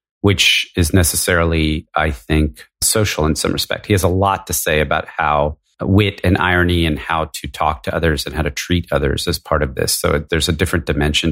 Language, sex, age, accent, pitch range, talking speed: English, male, 40-59, American, 80-95 Hz, 210 wpm